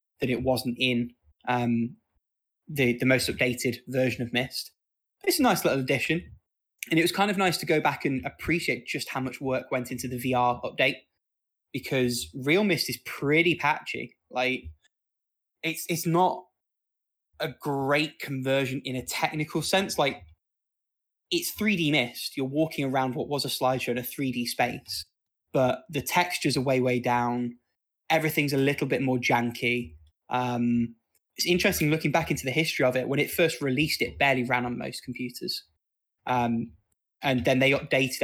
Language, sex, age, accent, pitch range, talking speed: English, male, 20-39, British, 120-150 Hz, 170 wpm